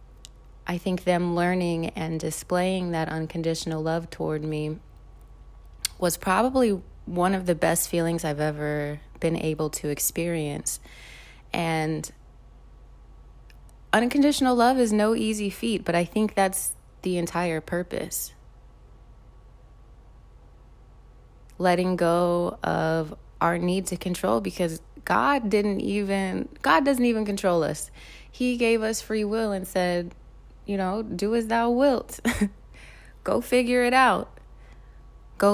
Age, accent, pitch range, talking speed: 20-39, American, 160-210 Hz, 120 wpm